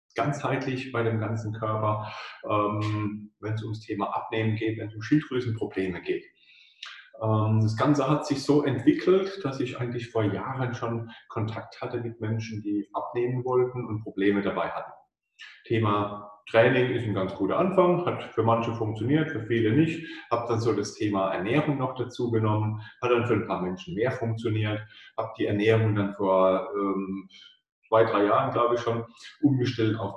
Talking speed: 170 wpm